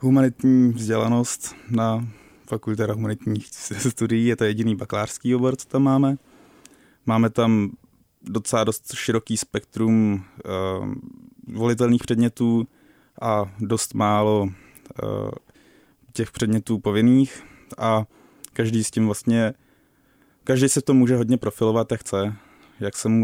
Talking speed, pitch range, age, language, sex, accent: 120 wpm, 105-120 Hz, 20-39, Czech, male, native